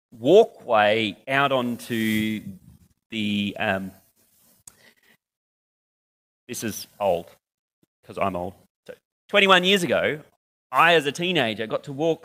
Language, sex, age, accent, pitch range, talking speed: English, male, 30-49, Australian, 105-145 Hz, 110 wpm